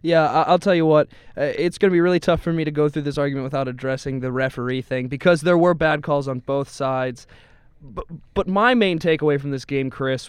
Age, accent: 20-39, American